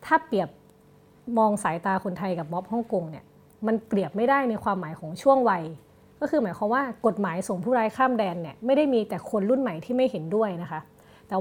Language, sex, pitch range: Thai, female, 190-245 Hz